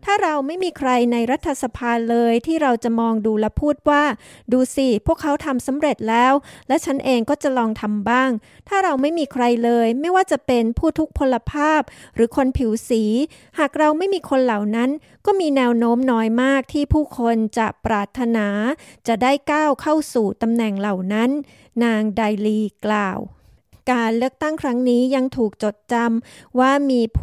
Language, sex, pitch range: Thai, female, 225-275 Hz